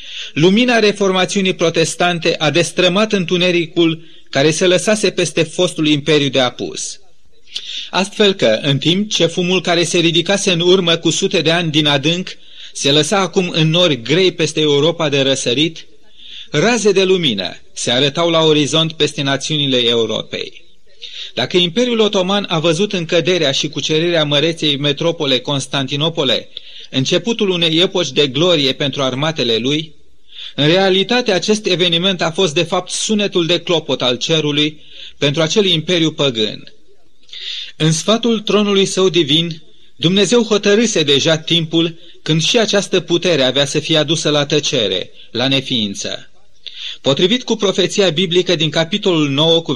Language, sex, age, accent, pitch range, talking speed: Romanian, male, 30-49, native, 155-190 Hz, 140 wpm